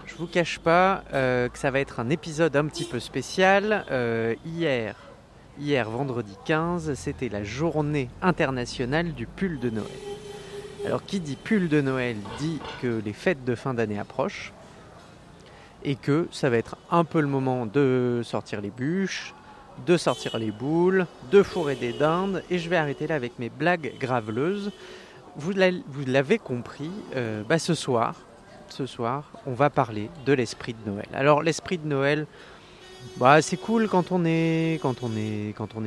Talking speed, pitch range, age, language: 170 wpm, 120-165 Hz, 30-49, French